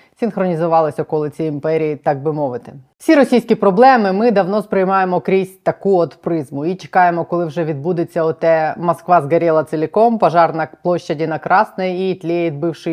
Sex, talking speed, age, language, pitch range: female, 155 wpm, 20-39, Ukrainian, 150-180 Hz